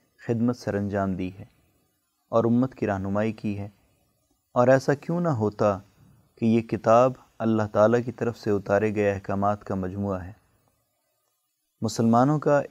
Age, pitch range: 30-49, 105-125 Hz